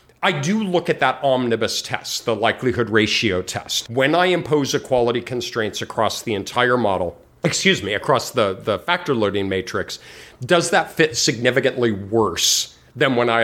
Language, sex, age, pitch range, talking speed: English, male, 40-59, 115-165 Hz, 160 wpm